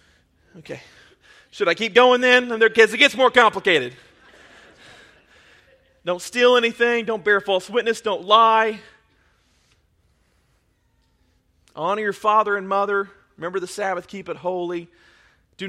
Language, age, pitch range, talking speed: English, 30-49, 185-235 Hz, 125 wpm